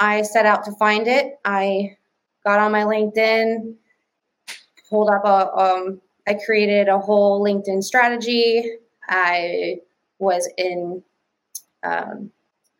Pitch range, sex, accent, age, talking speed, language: 180-215 Hz, female, American, 20-39, 115 wpm, English